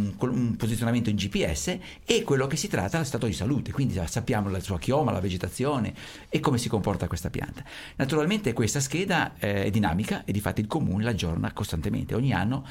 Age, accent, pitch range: 50-69, native, 105-130 Hz